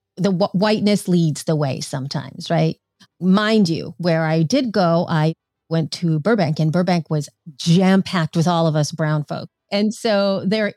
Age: 40-59